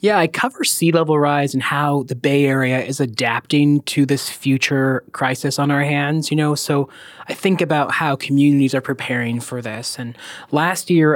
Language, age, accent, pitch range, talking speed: English, 20-39, American, 130-160 Hz, 190 wpm